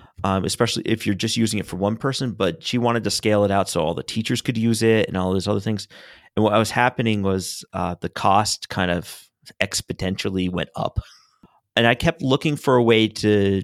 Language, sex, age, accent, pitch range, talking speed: English, male, 30-49, American, 100-120 Hz, 220 wpm